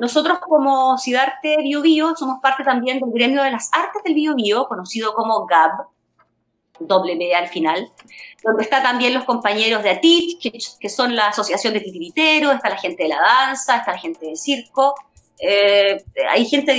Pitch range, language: 235-310 Hz, Spanish